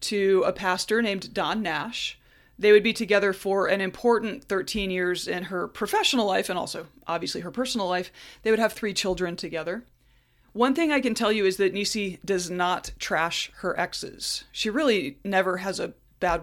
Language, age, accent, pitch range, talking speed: English, 30-49, American, 175-210 Hz, 185 wpm